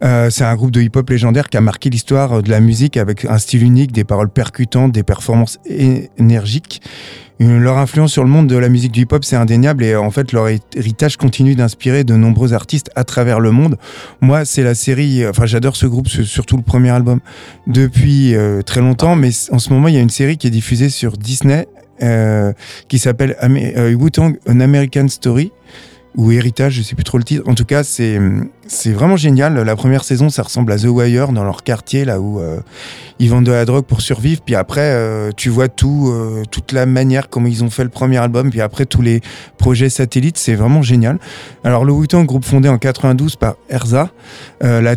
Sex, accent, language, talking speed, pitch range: male, French, French, 215 wpm, 115-135 Hz